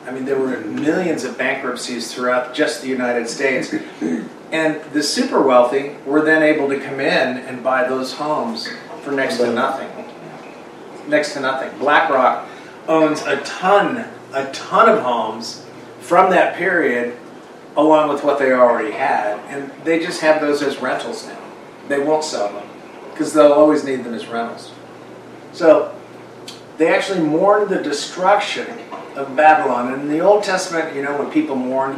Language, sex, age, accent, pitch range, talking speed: English, male, 40-59, American, 130-160 Hz, 165 wpm